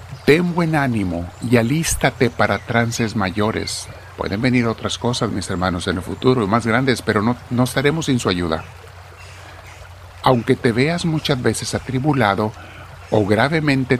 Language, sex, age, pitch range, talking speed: Spanish, male, 50-69, 95-120 Hz, 150 wpm